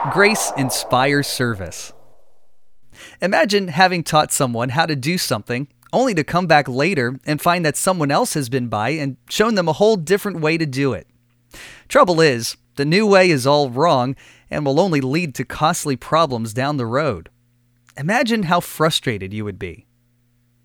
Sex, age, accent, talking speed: male, 30-49, American, 170 wpm